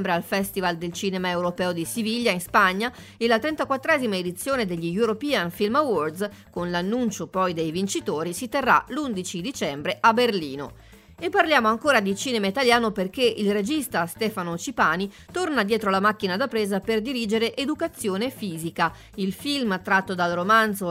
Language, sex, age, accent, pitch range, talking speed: Italian, female, 30-49, native, 185-250 Hz, 155 wpm